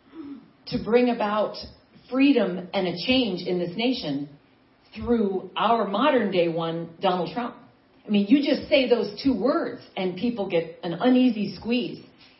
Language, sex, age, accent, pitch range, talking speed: English, female, 40-59, American, 180-255 Hz, 150 wpm